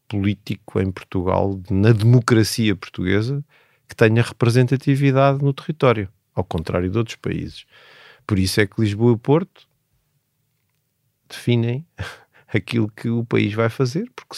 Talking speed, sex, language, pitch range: 130 wpm, male, Portuguese, 100-125 Hz